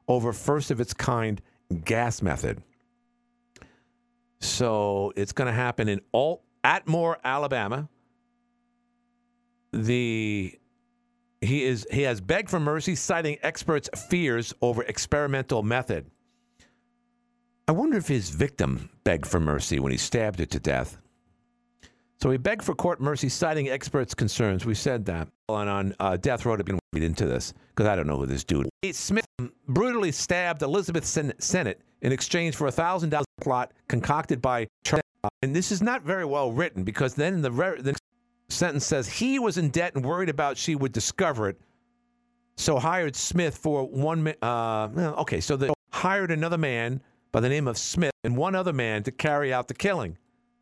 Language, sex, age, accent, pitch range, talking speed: English, male, 50-69, American, 110-175 Hz, 170 wpm